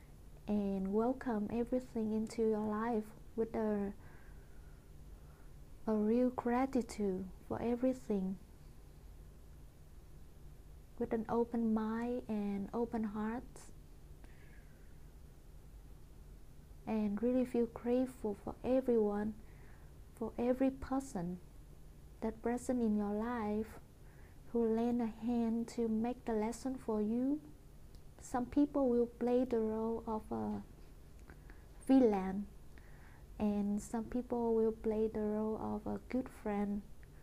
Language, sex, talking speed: English, female, 105 wpm